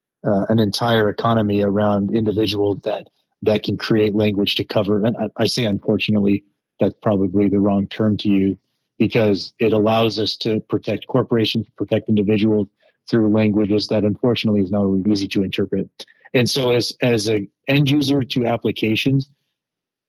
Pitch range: 100-115 Hz